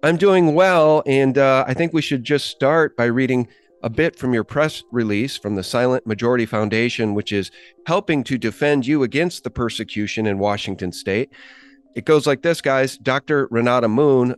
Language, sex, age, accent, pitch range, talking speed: English, male, 40-59, American, 115-155 Hz, 185 wpm